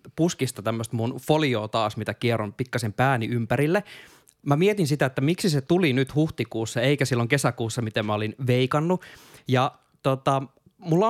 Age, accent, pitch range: 20-39, native, 120-155 Hz